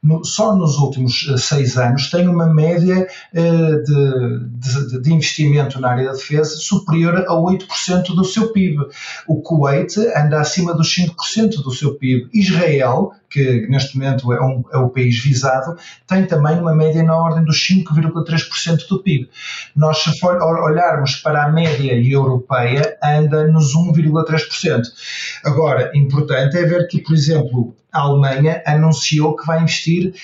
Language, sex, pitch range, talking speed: Portuguese, male, 135-165 Hz, 150 wpm